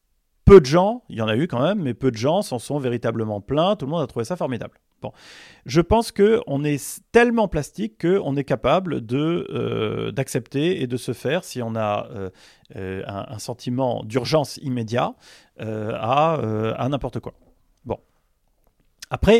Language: French